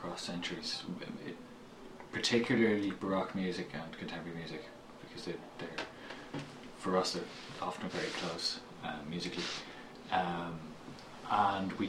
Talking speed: 105 wpm